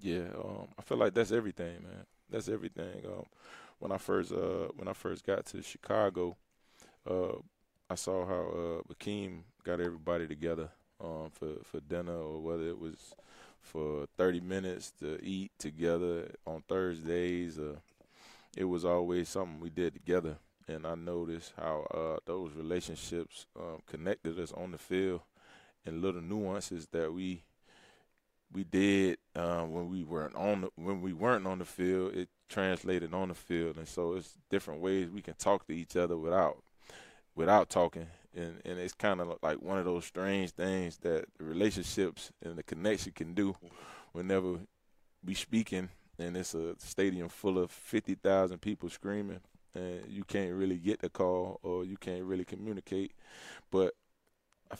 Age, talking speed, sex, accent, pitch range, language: 20-39, 165 wpm, male, American, 85-95 Hz, English